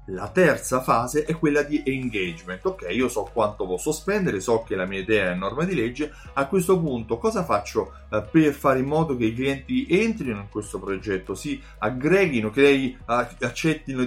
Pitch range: 110-150 Hz